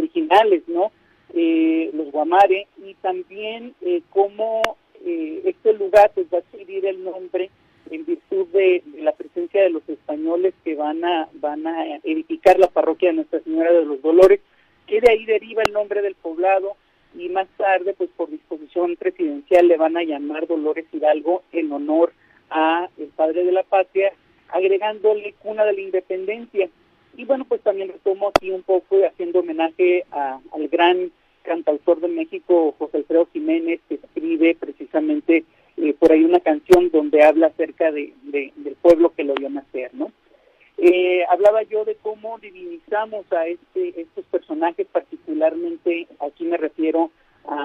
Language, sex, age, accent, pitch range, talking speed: Spanish, male, 50-69, Mexican, 165-225 Hz, 160 wpm